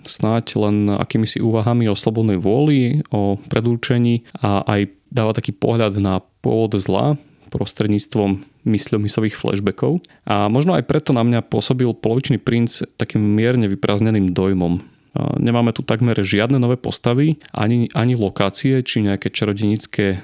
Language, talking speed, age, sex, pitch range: Slovak, 135 wpm, 30-49, male, 105-125 Hz